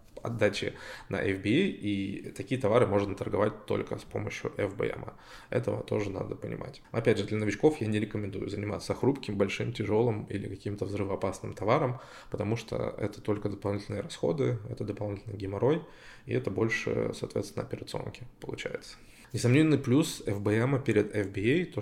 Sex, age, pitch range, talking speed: male, 20-39, 100-120 Hz, 145 wpm